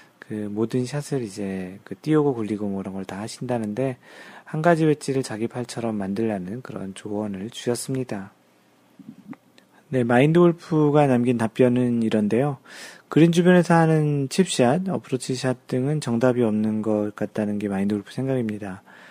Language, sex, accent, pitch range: Korean, male, native, 110-140 Hz